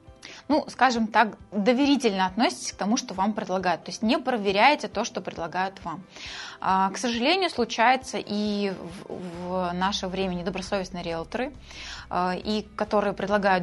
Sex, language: female, Russian